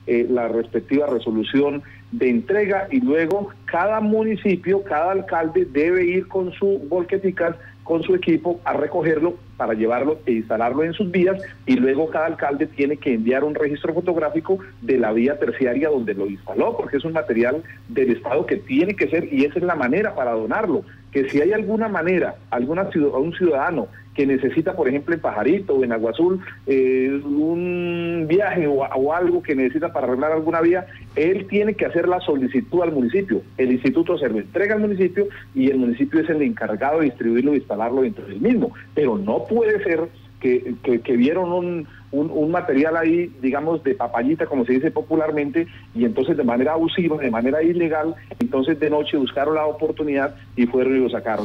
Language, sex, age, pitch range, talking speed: Spanish, male, 40-59, 125-175 Hz, 190 wpm